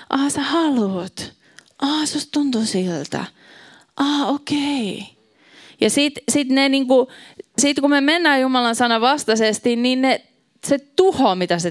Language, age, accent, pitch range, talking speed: Finnish, 20-39, native, 190-270 Hz, 135 wpm